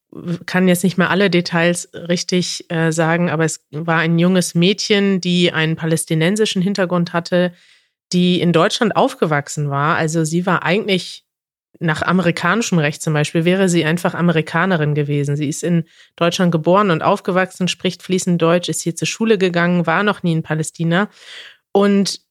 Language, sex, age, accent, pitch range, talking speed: German, female, 30-49, German, 165-190 Hz, 160 wpm